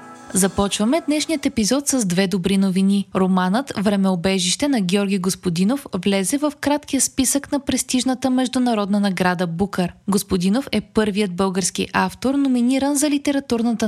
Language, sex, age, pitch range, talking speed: Bulgarian, female, 20-39, 195-260 Hz, 125 wpm